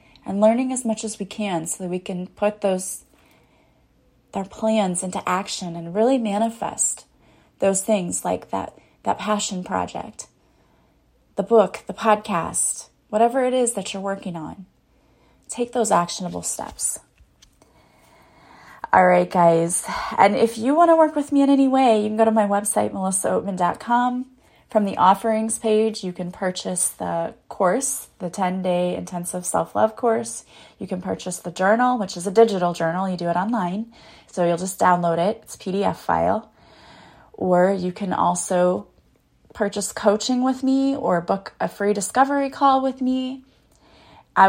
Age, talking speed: 30-49, 160 wpm